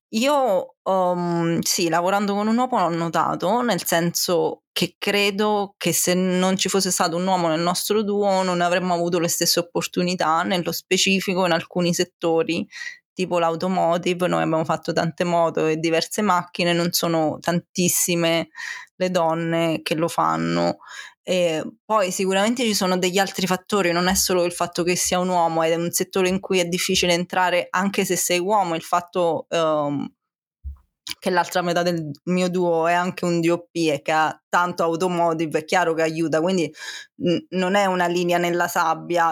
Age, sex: 20-39, female